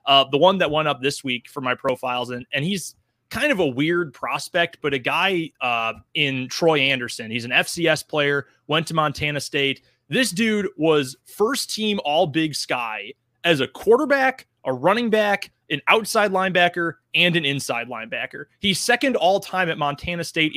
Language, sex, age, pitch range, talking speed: English, male, 30-49, 130-165 Hz, 180 wpm